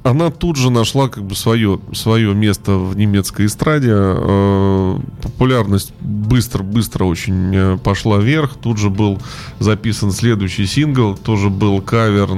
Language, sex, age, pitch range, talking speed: Russian, male, 20-39, 100-125 Hz, 135 wpm